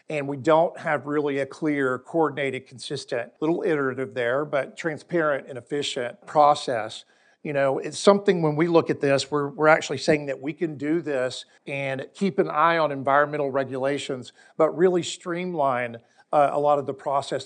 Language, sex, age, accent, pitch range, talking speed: English, male, 50-69, American, 135-155 Hz, 175 wpm